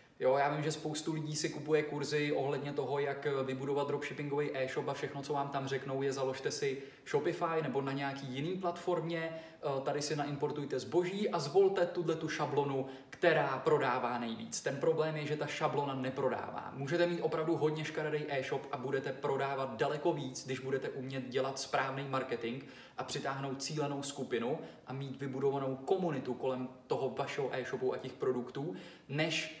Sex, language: male, Czech